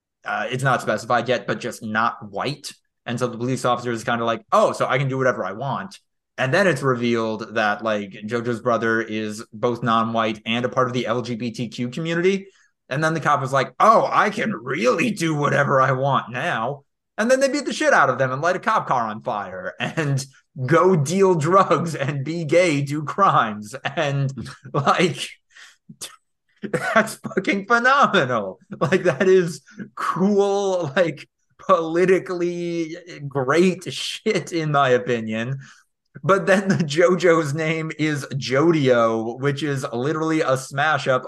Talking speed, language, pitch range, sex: 165 wpm, English, 125-180 Hz, male